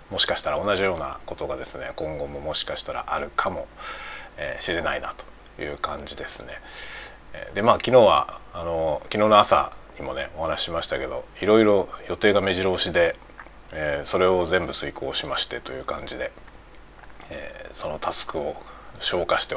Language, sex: Japanese, male